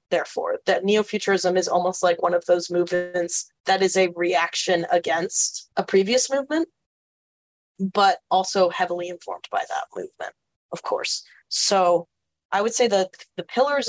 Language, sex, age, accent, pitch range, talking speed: English, female, 20-39, American, 180-220 Hz, 145 wpm